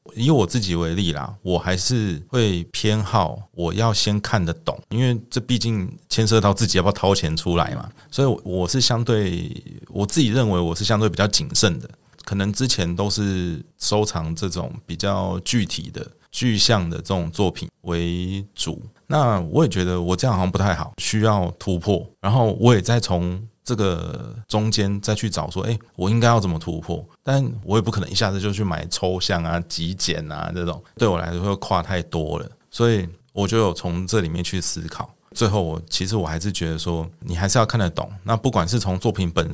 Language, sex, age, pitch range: Chinese, male, 30-49, 90-115 Hz